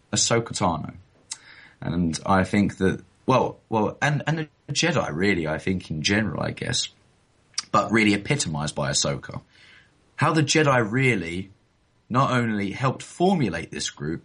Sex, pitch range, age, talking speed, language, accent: male, 95-125 Hz, 20-39, 145 wpm, English, British